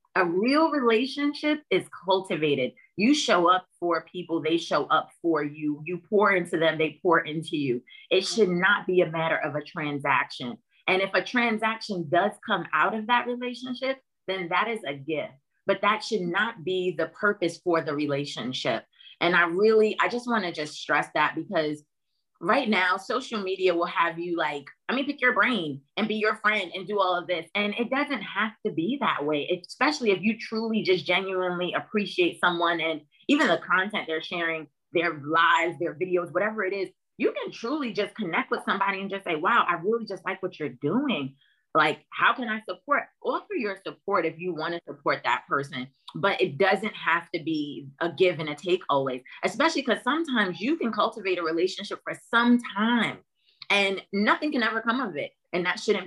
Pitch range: 170-220 Hz